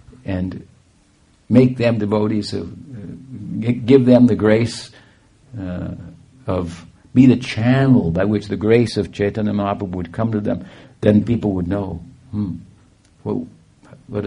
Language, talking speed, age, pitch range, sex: English, 135 wpm, 60-79, 90-110 Hz, male